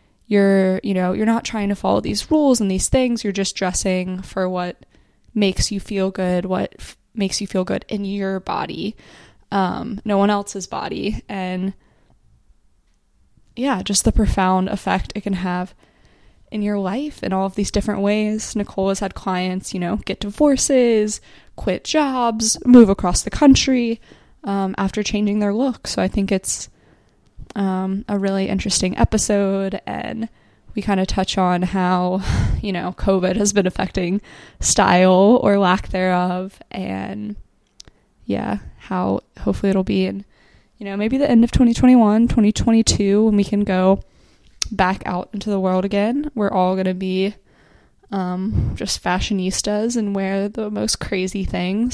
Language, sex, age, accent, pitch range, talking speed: English, female, 20-39, American, 185-210 Hz, 160 wpm